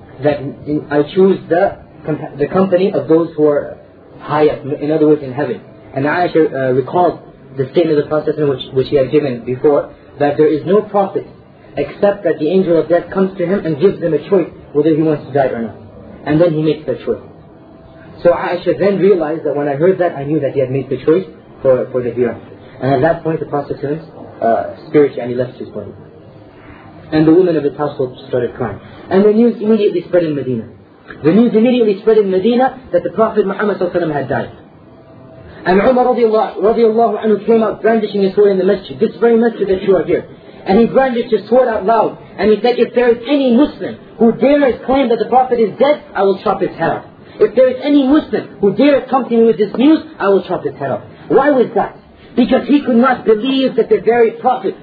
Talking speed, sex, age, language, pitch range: 220 wpm, male, 30-49, English, 150-230 Hz